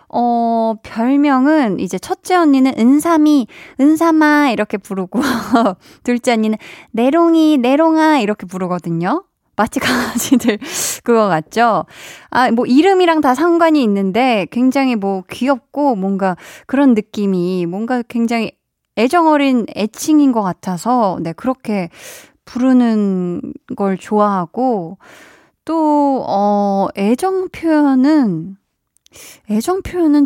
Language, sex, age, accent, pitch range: Korean, female, 20-39, native, 195-280 Hz